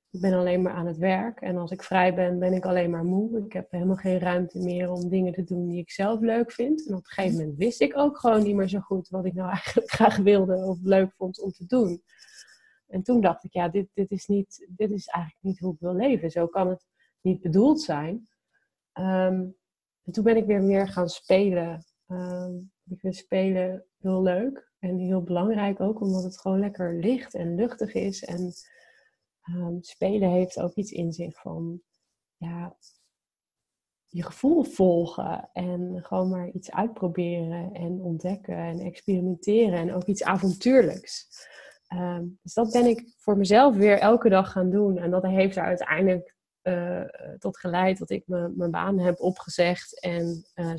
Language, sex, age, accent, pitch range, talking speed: Dutch, female, 30-49, Dutch, 180-200 Hz, 190 wpm